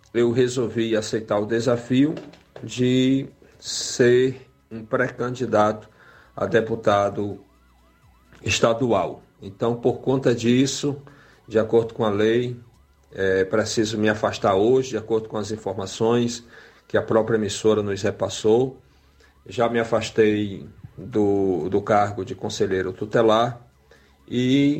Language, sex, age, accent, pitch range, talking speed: Portuguese, male, 40-59, Brazilian, 105-120 Hz, 110 wpm